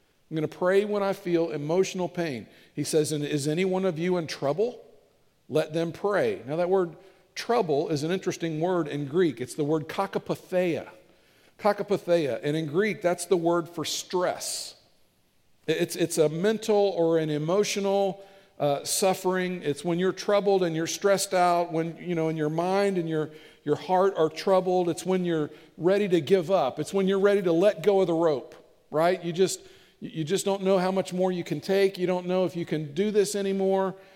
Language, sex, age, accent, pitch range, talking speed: English, male, 50-69, American, 155-190 Hz, 200 wpm